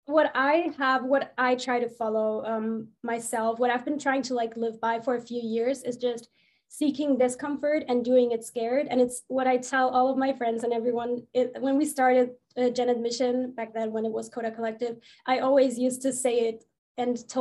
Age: 20-39